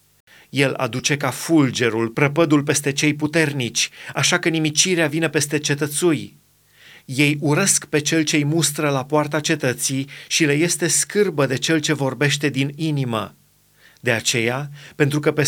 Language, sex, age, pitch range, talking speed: Romanian, male, 30-49, 140-170 Hz, 145 wpm